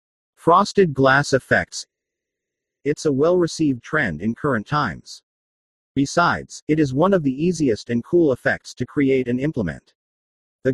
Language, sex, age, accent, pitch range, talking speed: English, male, 50-69, American, 120-160 Hz, 140 wpm